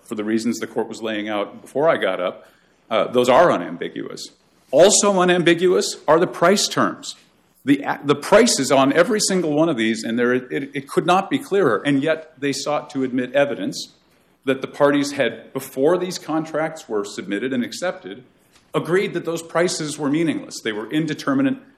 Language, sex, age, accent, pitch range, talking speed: English, male, 50-69, American, 115-160 Hz, 180 wpm